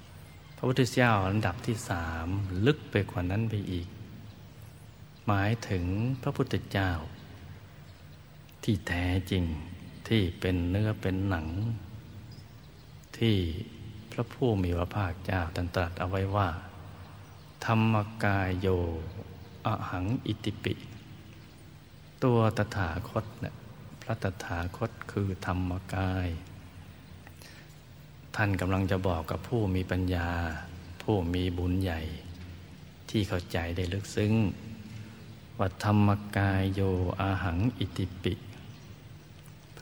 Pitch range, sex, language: 90-110 Hz, male, Thai